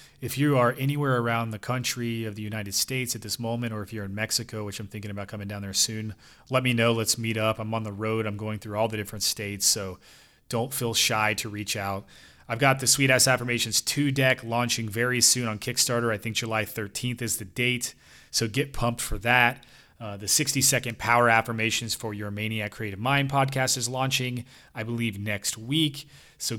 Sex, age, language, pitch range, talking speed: male, 30-49, English, 110-125 Hz, 215 wpm